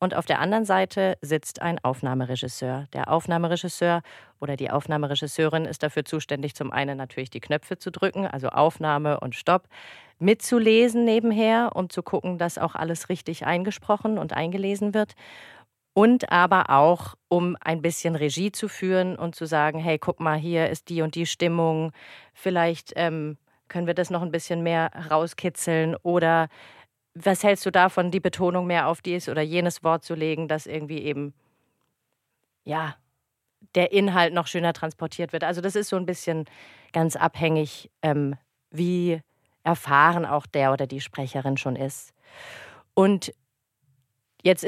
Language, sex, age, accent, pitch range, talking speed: German, female, 40-59, German, 150-180 Hz, 155 wpm